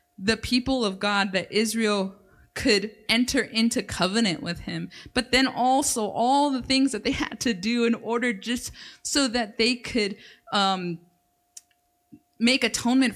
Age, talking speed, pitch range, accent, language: 20-39, 150 wpm, 215-255 Hz, American, English